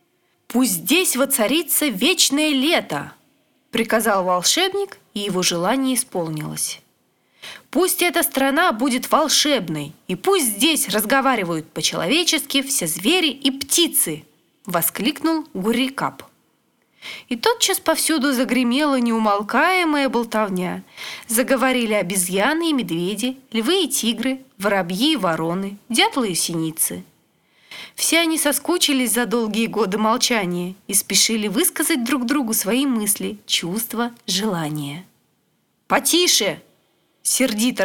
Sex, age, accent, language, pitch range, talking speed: female, 20-39, native, Russian, 195-280 Hz, 105 wpm